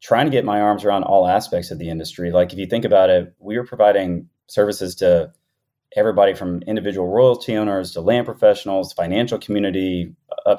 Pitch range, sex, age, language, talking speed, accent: 90-100 Hz, male, 30-49, English, 185 wpm, American